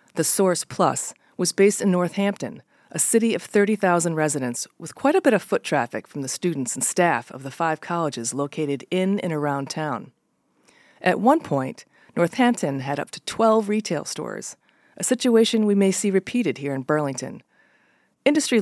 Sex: female